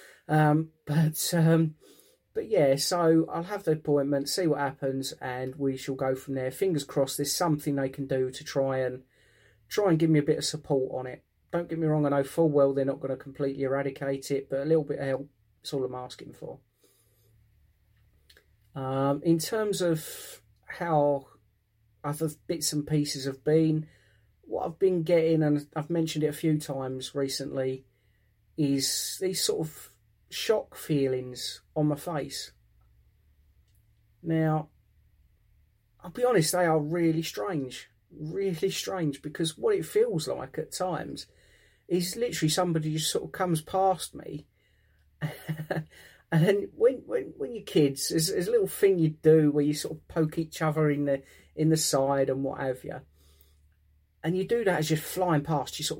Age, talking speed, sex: 30-49, 175 wpm, male